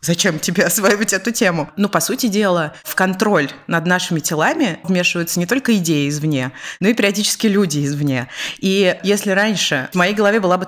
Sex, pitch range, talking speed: female, 170-215 Hz, 180 wpm